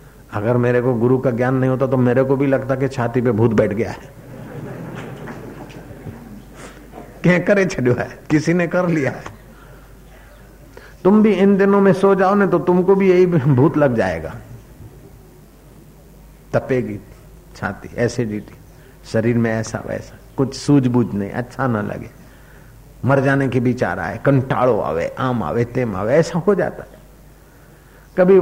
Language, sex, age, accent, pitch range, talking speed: Hindi, male, 50-69, native, 125-180 Hz, 145 wpm